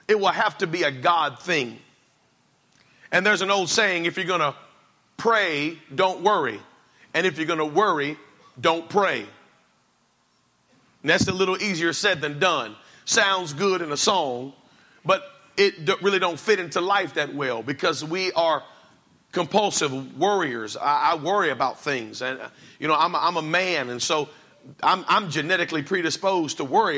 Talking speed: 165 wpm